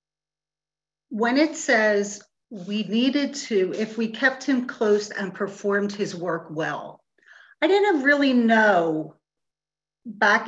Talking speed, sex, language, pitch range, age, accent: 120 wpm, female, English, 185-235 Hz, 40-59, American